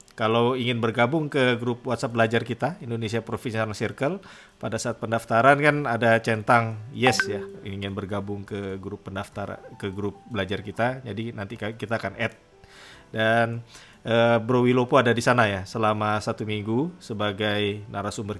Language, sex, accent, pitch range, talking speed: English, male, Indonesian, 105-125 Hz, 150 wpm